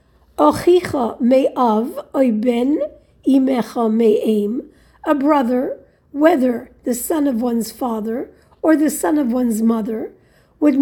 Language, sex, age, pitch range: English, female, 50-69, 245-315 Hz